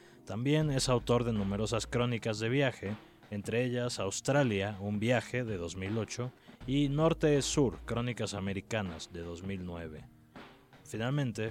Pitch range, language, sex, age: 95-125 Hz, Spanish, male, 20-39